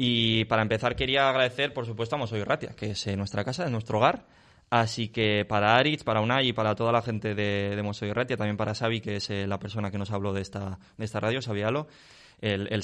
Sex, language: male, Spanish